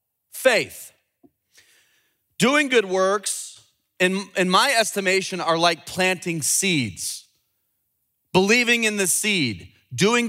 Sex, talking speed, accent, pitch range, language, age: male, 100 wpm, American, 155-230 Hz, English, 30-49